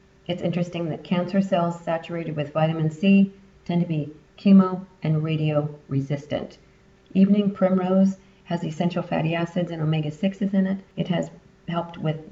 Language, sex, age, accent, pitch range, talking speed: English, female, 40-59, American, 160-190 Hz, 140 wpm